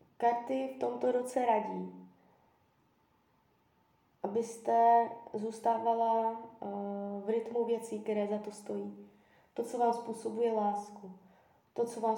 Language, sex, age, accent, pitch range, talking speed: Czech, female, 20-39, native, 195-220 Hz, 110 wpm